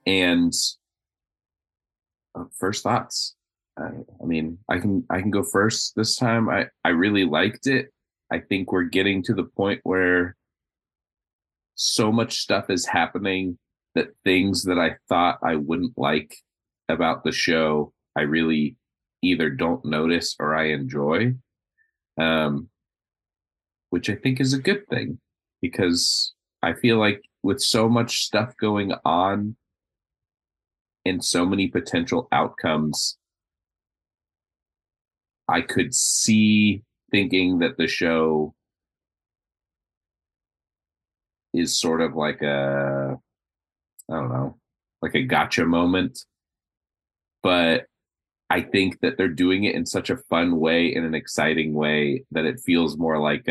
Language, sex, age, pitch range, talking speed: English, male, 30-49, 80-100 Hz, 130 wpm